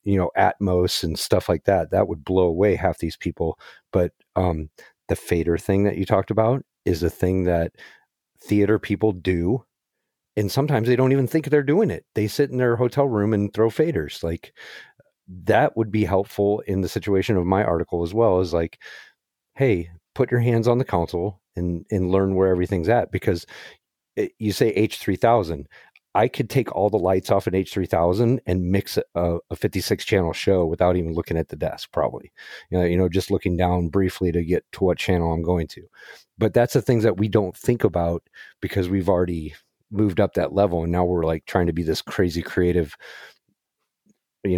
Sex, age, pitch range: male, 40-59, 90-110 Hz